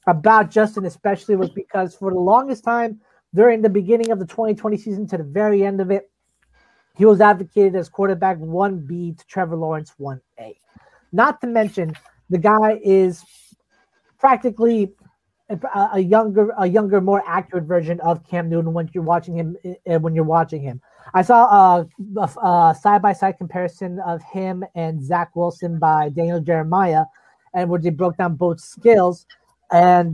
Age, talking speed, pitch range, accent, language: 30-49, 165 wpm, 170-205 Hz, American, English